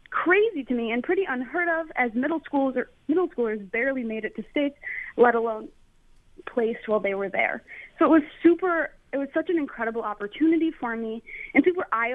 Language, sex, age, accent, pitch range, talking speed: English, female, 20-39, American, 225-300 Hz, 200 wpm